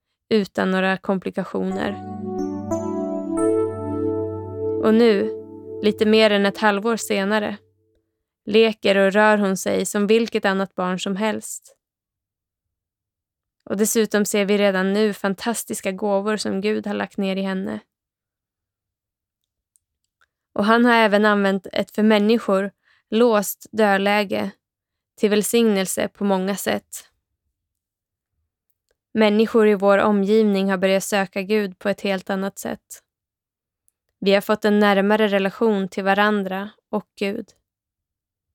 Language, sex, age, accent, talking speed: Swedish, female, 20-39, native, 115 wpm